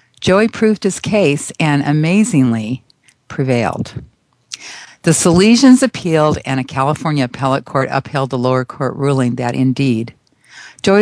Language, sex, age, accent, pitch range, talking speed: English, female, 50-69, American, 125-165 Hz, 125 wpm